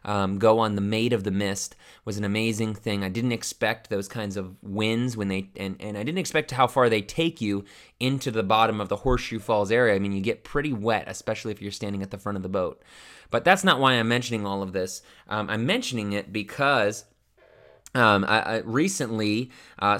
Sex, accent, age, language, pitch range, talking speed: male, American, 20-39, English, 105-130 Hz, 215 wpm